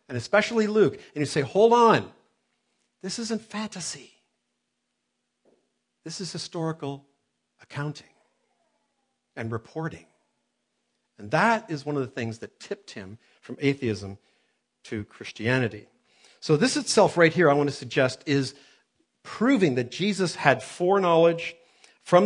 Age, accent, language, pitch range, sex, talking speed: 50-69, American, English, 130-185 Hz, male, 125 wpm